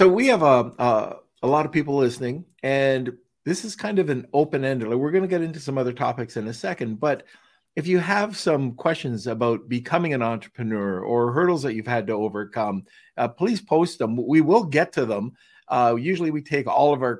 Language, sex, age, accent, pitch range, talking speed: English, male, 50-69, American, 115-155 Hz, 215 wpm